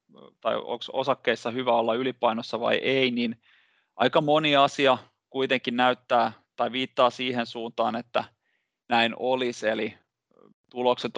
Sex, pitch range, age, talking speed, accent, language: male, 115-125 Hz, 20-39, 125 wpm, native, Finnish